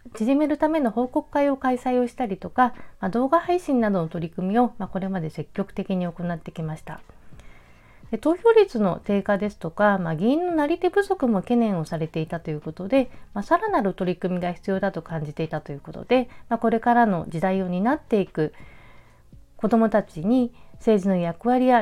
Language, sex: Japanese, female